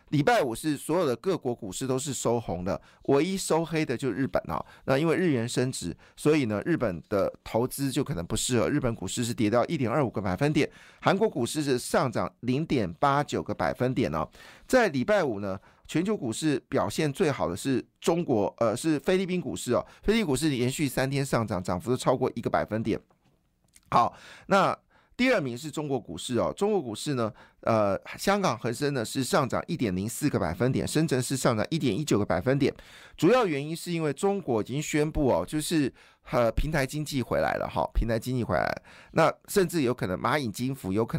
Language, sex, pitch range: Chinese, male, 110-150 Hz